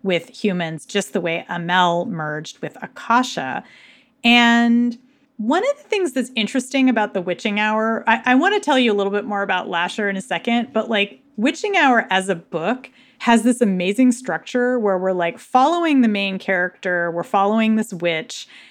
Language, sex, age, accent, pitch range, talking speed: English, female, 30-49, American, 185-250 Hz, 180 wpm